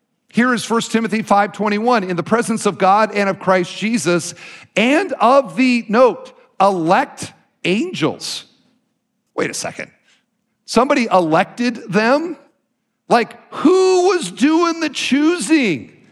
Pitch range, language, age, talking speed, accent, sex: 175-245 Hz, English, 50-69, 120 wpm, American, male